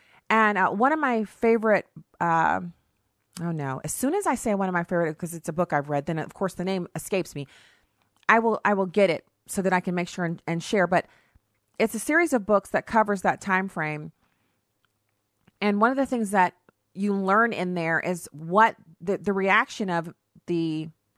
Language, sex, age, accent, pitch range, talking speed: English, female, 30-49, American, 170-215 Hz, 215 wpm